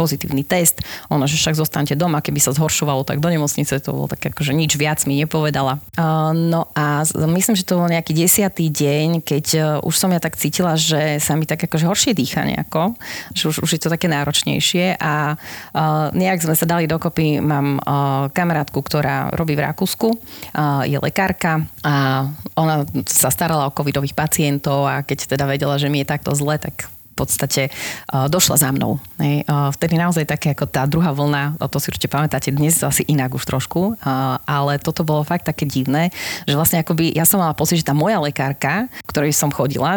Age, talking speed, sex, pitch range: 30-49, 190 wpm, female, 145-170 Hz